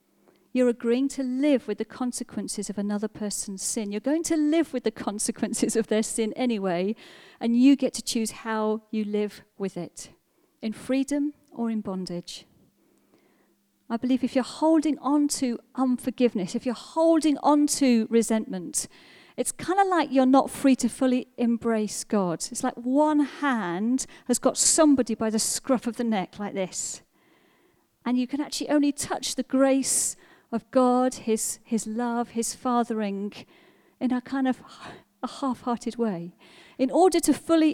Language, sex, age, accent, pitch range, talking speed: English, female, 40-59, British, 215-265 Hz, 165 wpm